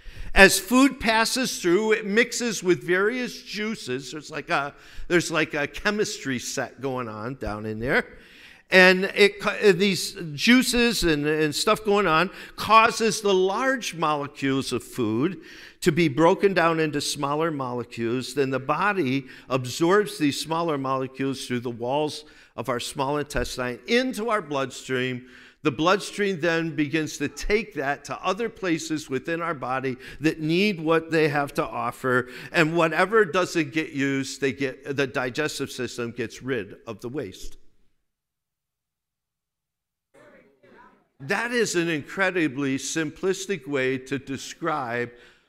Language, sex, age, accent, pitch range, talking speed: English, male, 50-69, American, 135-200 Hz, 135 wpm